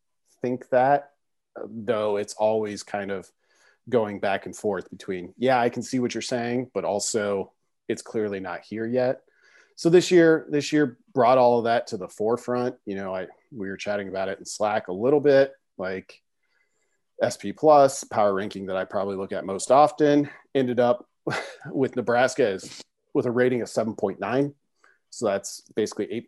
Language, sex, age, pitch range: English, male, 40-59, 100-135 Hz